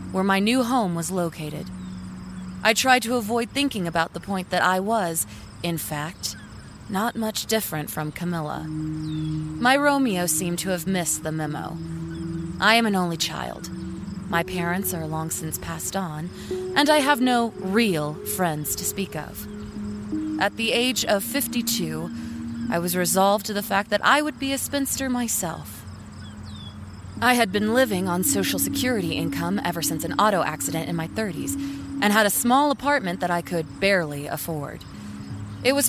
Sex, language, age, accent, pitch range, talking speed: female, English, 20-39, American, 145-220 Hz, 165 wpm